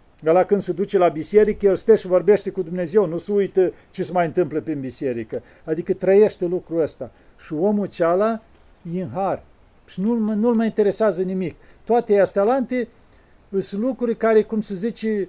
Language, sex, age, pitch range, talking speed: Romanian, male, 50-69, 180-220 Hz, 180 wpm